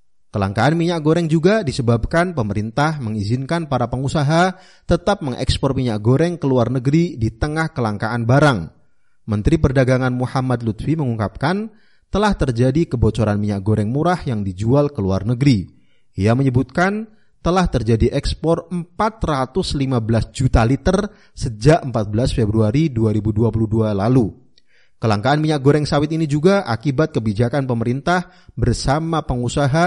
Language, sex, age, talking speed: Indonesian, male, 30-49, 120 wpm